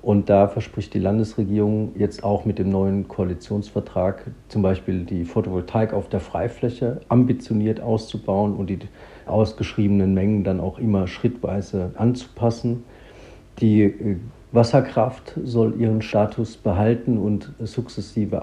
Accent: German